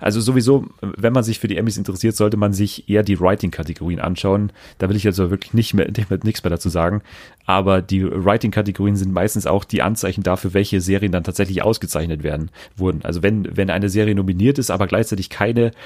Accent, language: German, German